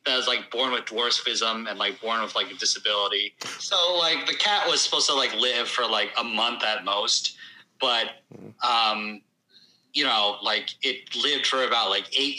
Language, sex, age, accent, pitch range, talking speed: English, male, 30-49, American, 105-135 Hz, 190 wpm